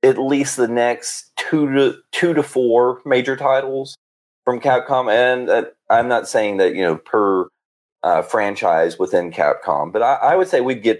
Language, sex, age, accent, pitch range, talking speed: English, male, 30-49, American, 100-155 Hz, 180 wpm